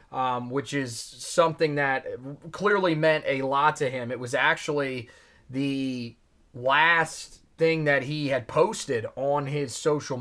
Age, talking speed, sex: 30-49, 140 wpm, male